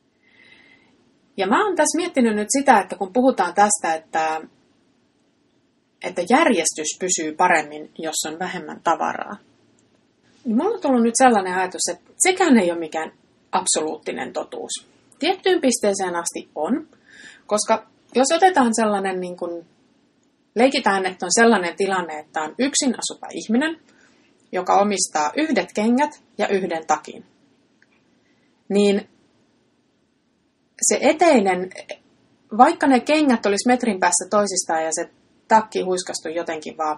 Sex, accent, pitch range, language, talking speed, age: female, native, 185-270 Hz, Finnish, 125 wpm, 30-49